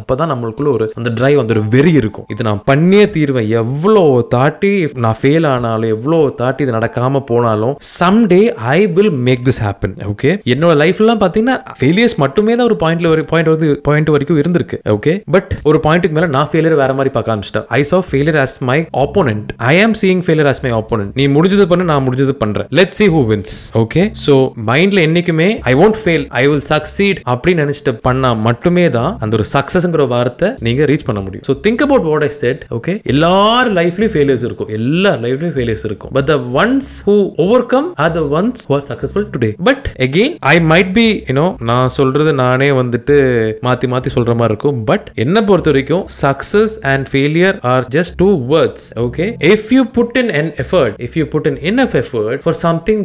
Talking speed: 190 wpm